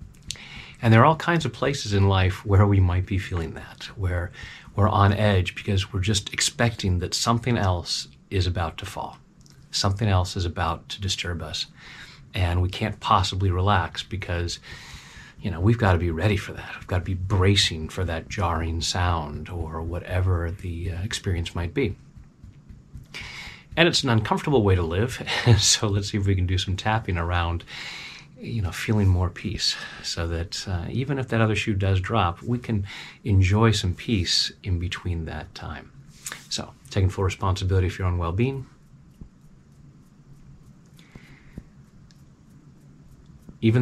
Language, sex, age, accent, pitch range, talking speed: English, male, 30-49, American, 90-110 Hz, 160 wpm